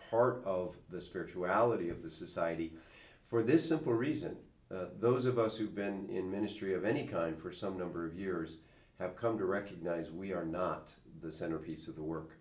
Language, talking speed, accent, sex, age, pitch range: English, 190 wpm, American, male, 50-69, 80-90 Hz